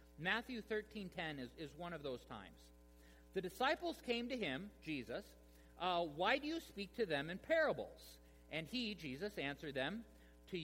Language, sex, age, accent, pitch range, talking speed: English, male, 50-69, American, 125-215 Hz, 165 wpm